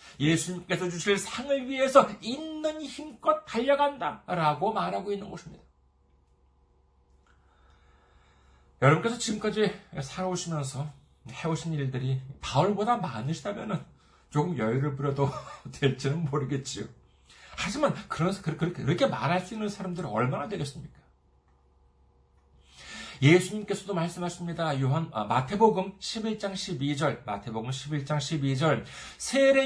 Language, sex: Korean, male